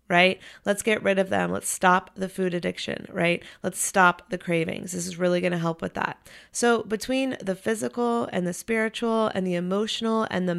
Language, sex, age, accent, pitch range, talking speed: English, female, 30-49, American, 180-210 Hz, 205 wpm